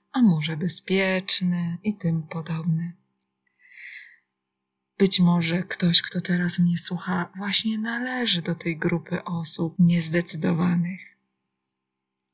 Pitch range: 160-195 Hz